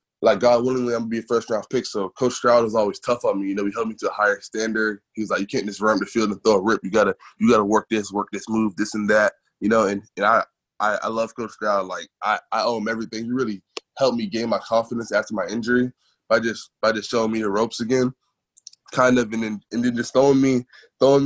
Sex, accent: male, American